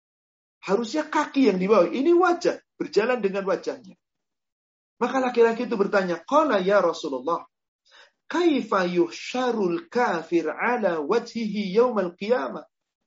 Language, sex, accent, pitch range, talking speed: Indonesian, male, native, 180-250 Hz, 85 wpm